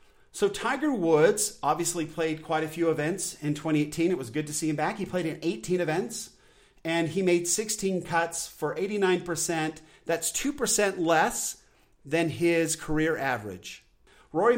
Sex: male